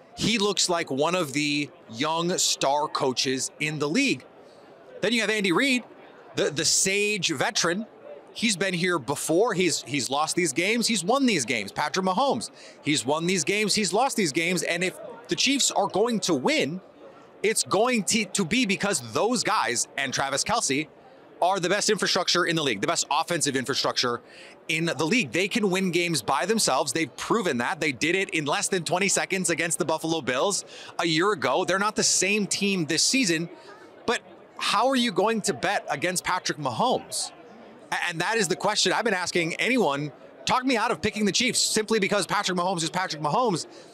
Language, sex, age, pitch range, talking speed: English, male, 30-49, 160-210 Hz, 195 wpm